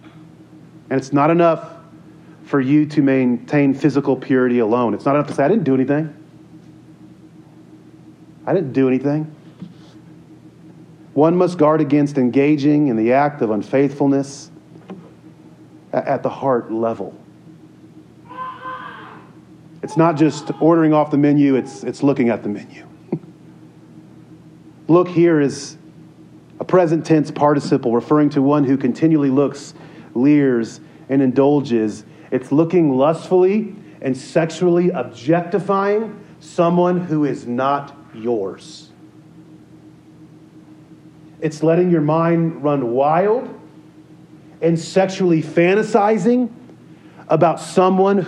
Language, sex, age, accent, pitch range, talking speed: English, male, 40-59, American, 145-165 Hz, 110 wpm